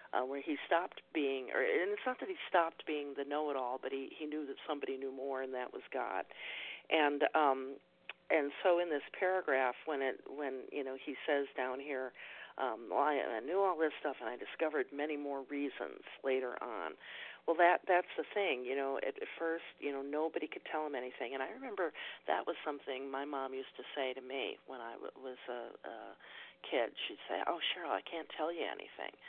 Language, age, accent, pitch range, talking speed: English, 50-69, American, 135-170 Hz, 210 wpm